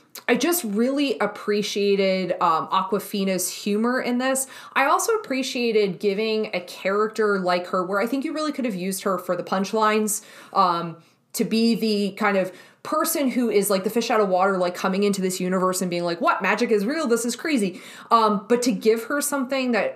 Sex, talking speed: female, 200 wpm